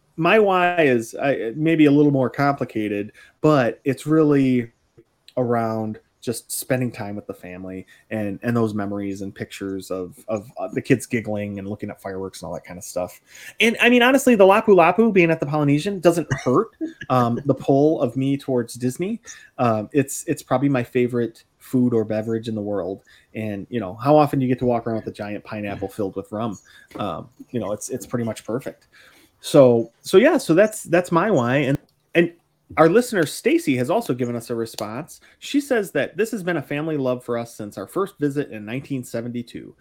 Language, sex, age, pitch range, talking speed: English, male, 20-39, 110-155 Hz, 200 wpm